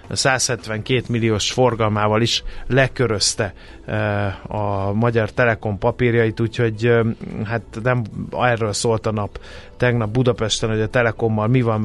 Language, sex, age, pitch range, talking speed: Hungarian, male, 30-49, 110-130 Hz, 125 wpm